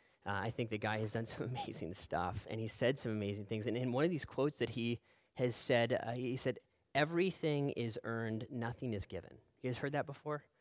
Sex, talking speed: male, 225 wpm